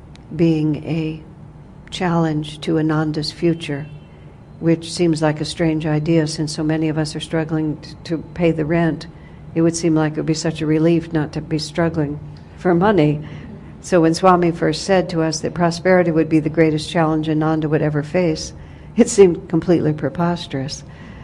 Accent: American